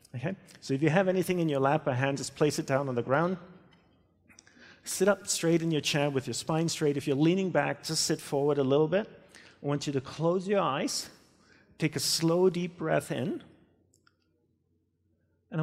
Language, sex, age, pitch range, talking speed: English, male, 40-59, 105-155 Hz, 200 wpm